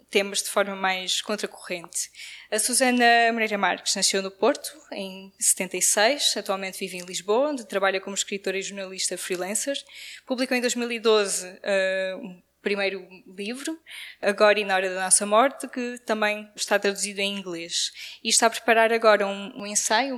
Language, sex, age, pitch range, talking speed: Portuguese, female, 10-29, 195-230 Hz, 160 wpm